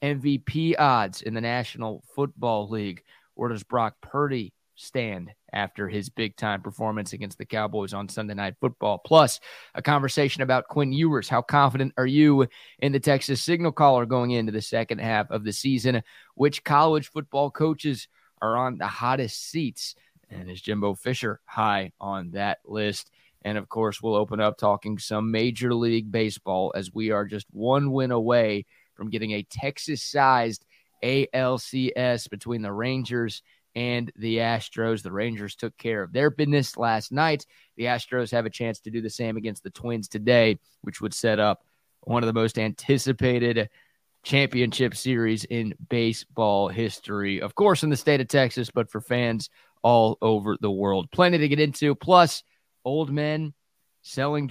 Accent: American